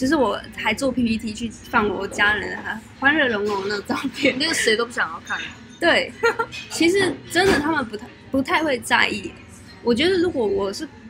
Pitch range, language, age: 210-275 Hz, Chinese, 20-39